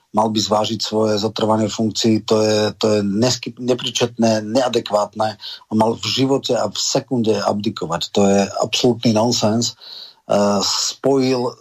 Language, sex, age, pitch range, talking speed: Slovak, male, 40-59, 110-120 Hz, 140 wpm